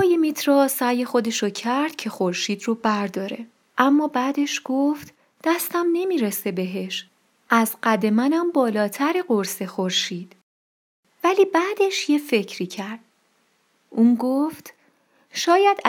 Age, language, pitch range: 30-49, Persian, 205-295 Hz